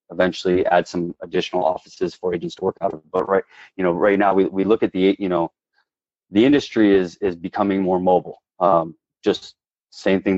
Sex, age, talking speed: male, 30-49, 200 wpm